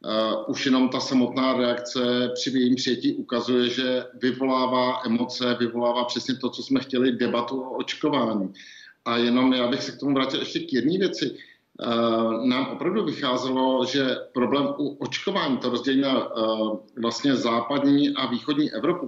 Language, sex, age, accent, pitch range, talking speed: Czech, male, 50-69, native, 125-165 Hz, 160 wpm